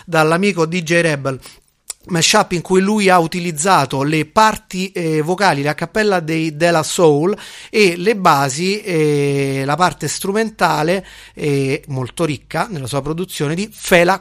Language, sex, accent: Italian, male, native